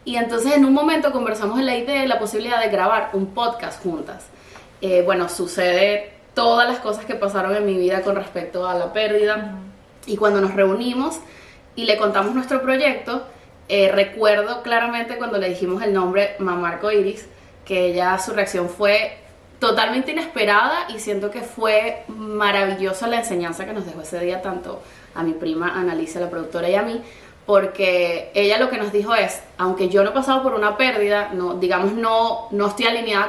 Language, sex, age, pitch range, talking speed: Spanish, female, 20-39, 190-235 Hz, 185 wpm